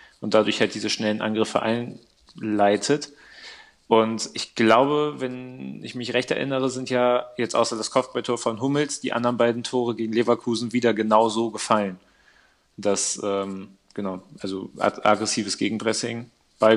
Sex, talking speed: male, 145 wpm